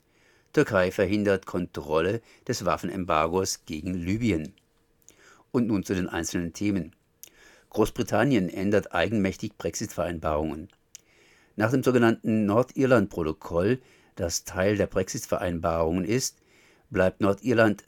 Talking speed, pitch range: 95 wpm, 90-110 Hz